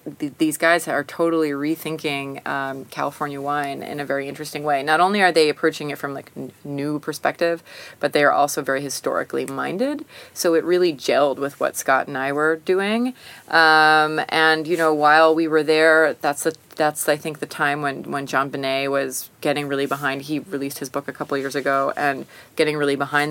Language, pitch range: English, 140-160 Hz